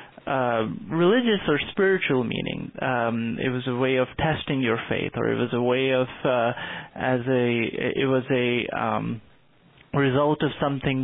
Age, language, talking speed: 30-49, English, 165 wpm